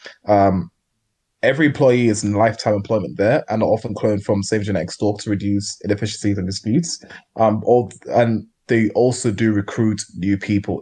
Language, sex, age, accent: English, male, 20-39, British